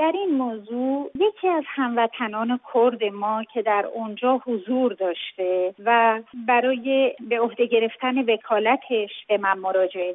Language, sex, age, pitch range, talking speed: English, female, 40-59, 215-270 Hz, 135 wpm